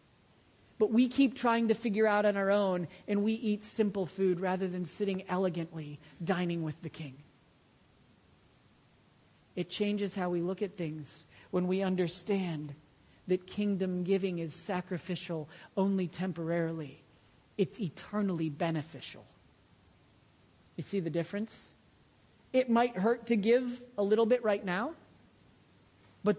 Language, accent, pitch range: English, American, 165-210 Hz